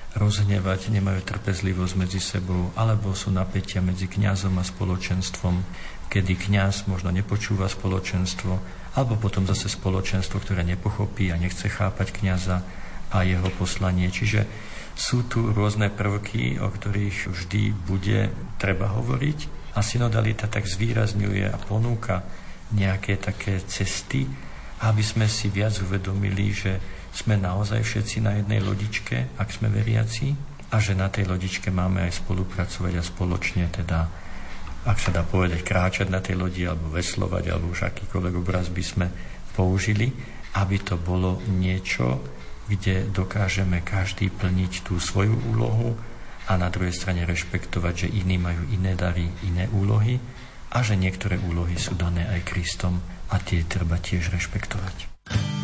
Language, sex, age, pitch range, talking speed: Slovak, male, 50-69, 90-105 Hz, 140 wpm